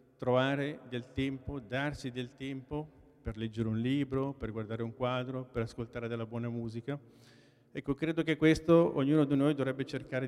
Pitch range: 120-140 Hz